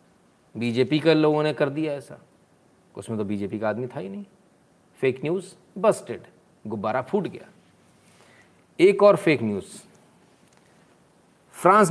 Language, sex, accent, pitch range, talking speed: Hindi, male, native, 160-215 Hz, 130 wpm